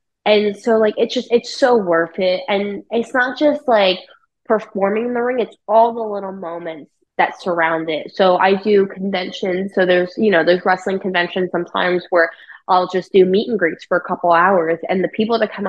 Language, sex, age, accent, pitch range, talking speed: English, female, 20-39, American, 170-200 Hz, 205 wpm